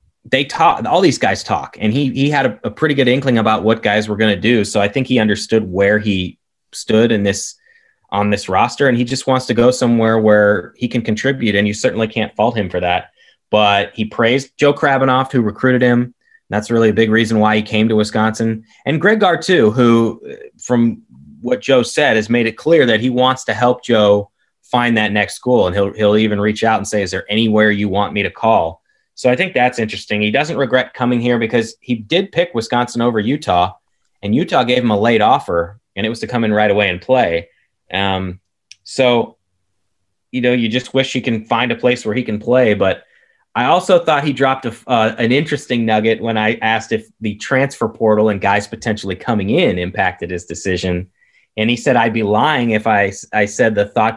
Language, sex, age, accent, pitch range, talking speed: English, male, 20-39, American, 105-125 Hz, 220 wpm